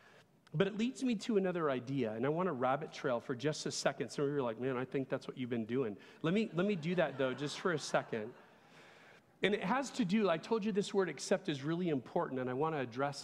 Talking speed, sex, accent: 265 wpm, male, American